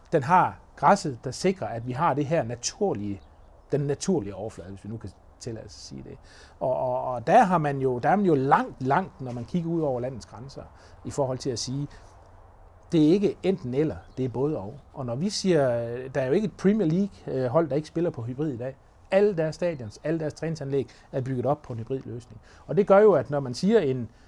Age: 30-49